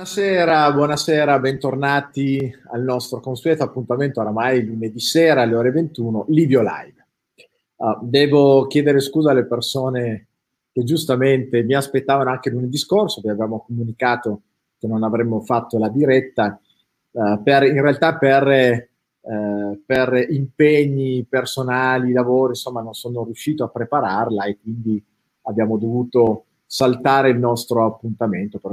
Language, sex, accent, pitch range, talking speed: Italian, male, native, 115-140 Hz, 130 wpm